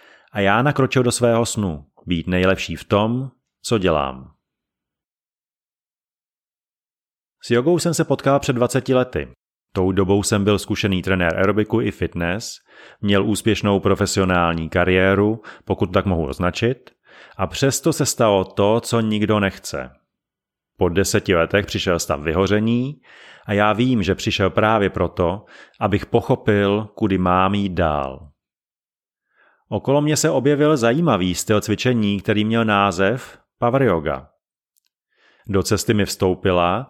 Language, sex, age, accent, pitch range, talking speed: Czech, male, 30-49, native, 95-120 Hz, 130 wpm